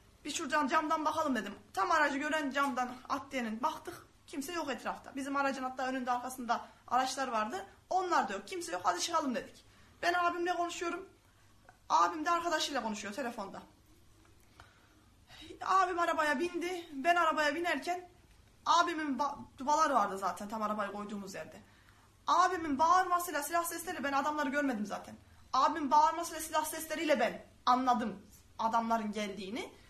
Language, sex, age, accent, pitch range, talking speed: Turkish, female, 20-39, native, 260-360 Hz, 135 wpm